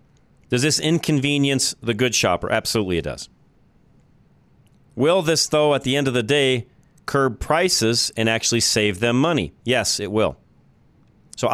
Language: English